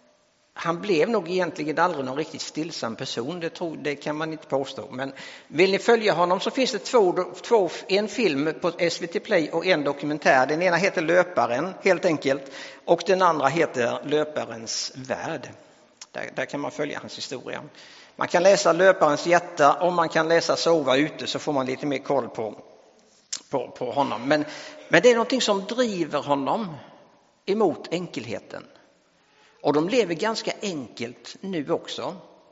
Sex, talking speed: male, 160 wpm